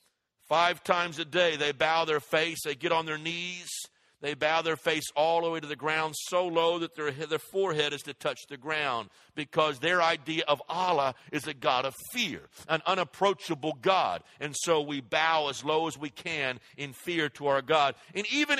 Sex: male